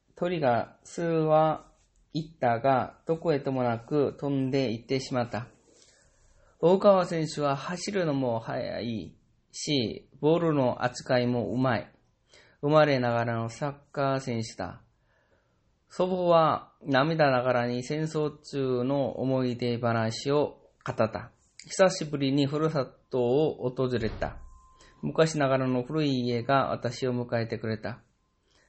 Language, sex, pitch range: English, male, 115-150 Hz